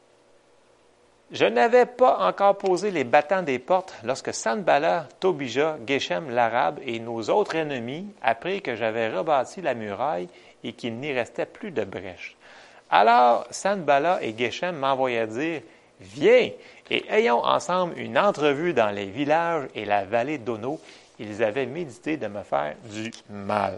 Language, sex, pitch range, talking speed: French, male, 110-180 Hz, 150 wpm